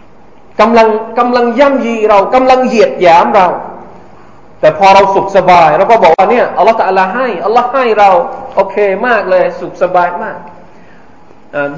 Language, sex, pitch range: Thai, male, 180-250 Hz